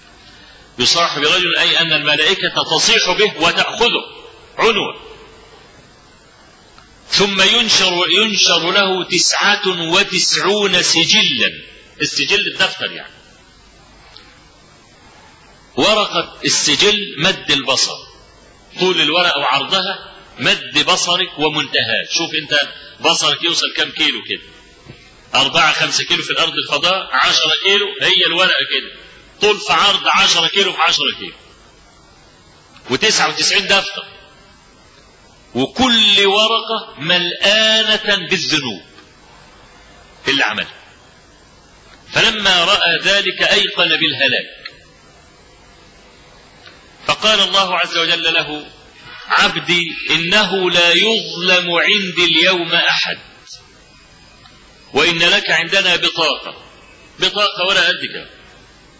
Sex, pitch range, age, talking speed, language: male, 165-200 Hz, 40-59, 90 wpm, Arabic